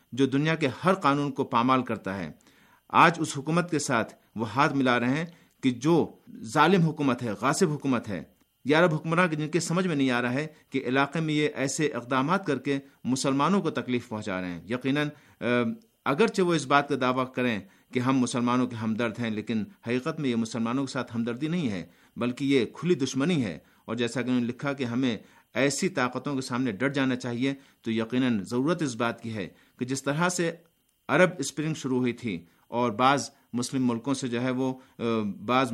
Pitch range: 120-145 Hz